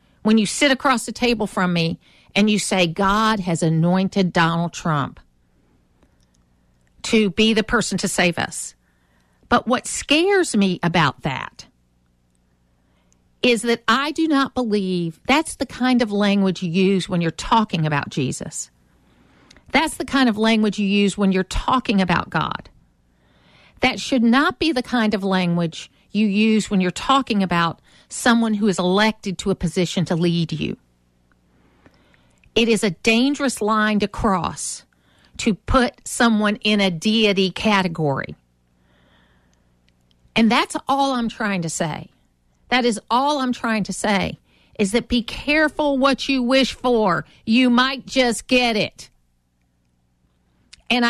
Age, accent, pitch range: 50-69, American, 150-245 Hz